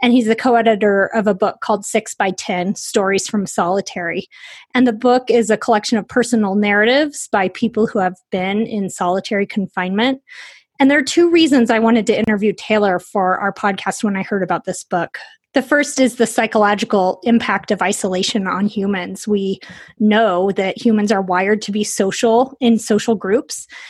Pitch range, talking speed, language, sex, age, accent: 195-235 Hz, 180 wpm, English, female, 20-39, American